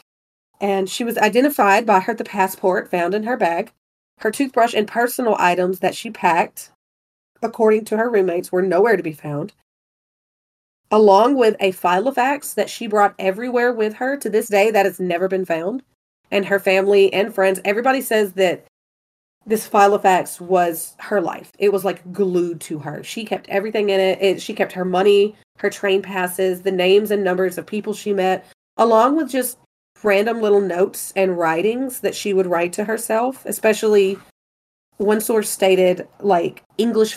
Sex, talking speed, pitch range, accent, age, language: female, 175 wpm, 180-215 Hz, American, 30-49, English